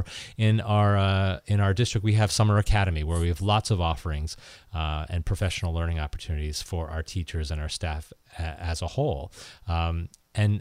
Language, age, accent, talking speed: English, 30-49, American, 170 wpm